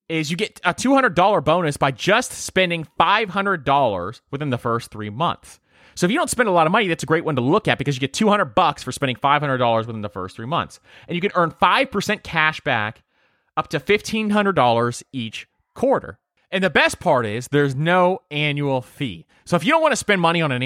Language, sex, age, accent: English, male, 30-49, American